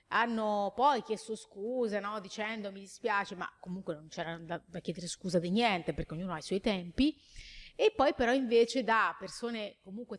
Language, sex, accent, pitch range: Italian, female, native, 190-235 Hz